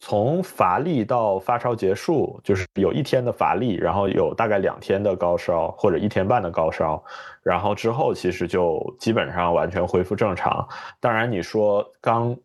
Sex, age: male, 20-39